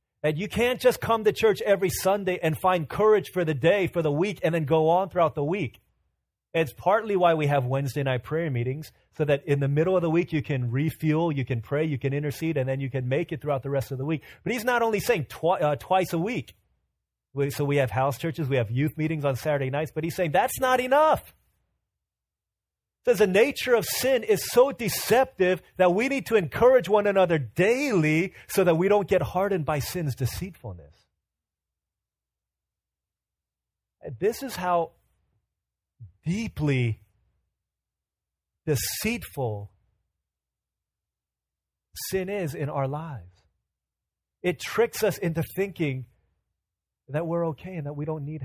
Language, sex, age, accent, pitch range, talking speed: English, male, 30-49, American, 135-185 Hz, 175 wpm